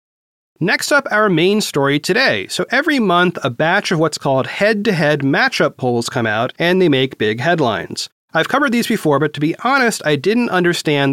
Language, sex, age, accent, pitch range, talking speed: English, male, 30-49, American, 135-205 Hz, 190 wpm